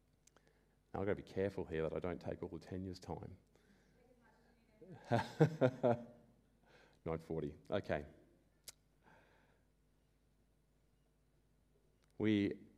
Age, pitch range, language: 30-49, 90-100 Hz, English